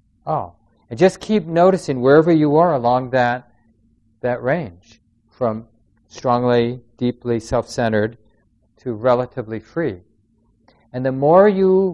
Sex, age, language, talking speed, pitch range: male, 50-69, English, 120 wpm, 115-150 Hz